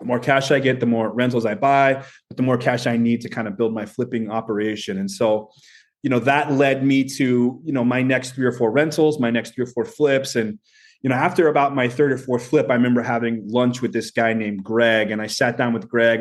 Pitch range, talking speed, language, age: 115-140 Hz, 260 wpm, English, 30-49